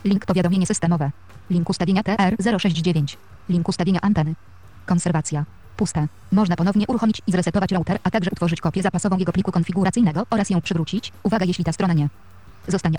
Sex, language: female, Polish